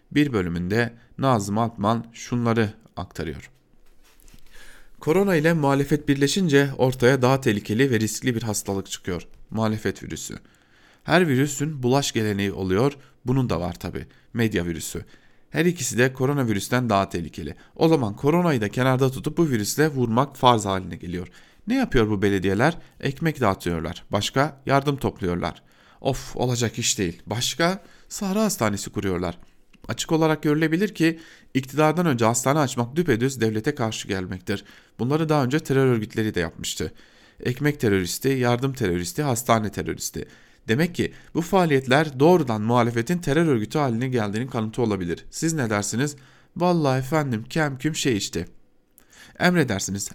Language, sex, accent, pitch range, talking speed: Turkish, male, native, 105-145 Hz, 135 wpm